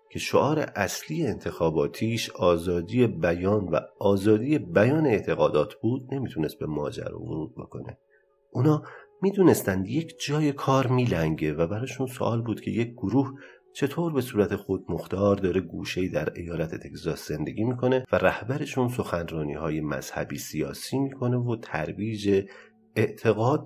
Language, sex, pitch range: Persian, male, 90-135 Hz